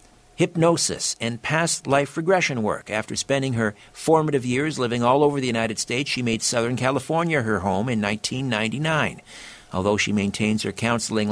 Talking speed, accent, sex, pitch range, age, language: 160 wpm, American, male, 115-150 Hz, 50-69, English